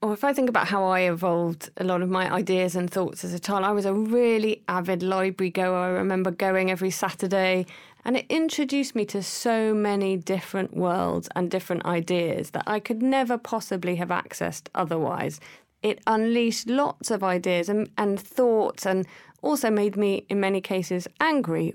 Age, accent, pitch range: 30-49, British, 180-220 Hz